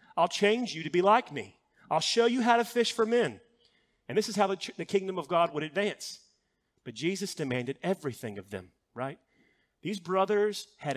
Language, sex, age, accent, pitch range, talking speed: English, male, 40-59, American, 135-195 Hz, 195 wpm